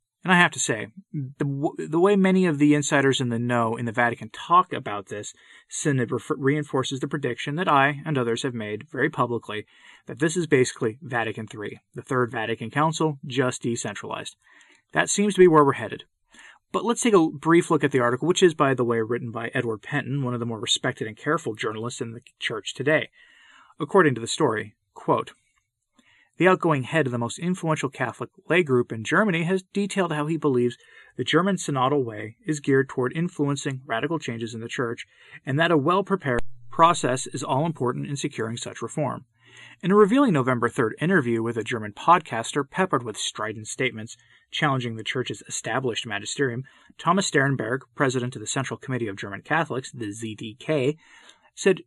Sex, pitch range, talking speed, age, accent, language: male, 120-160 Hz, 185 wpm, 30-49, American, English